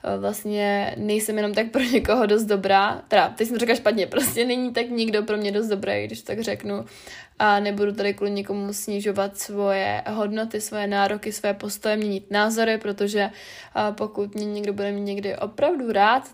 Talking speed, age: 175 wpm, 20-39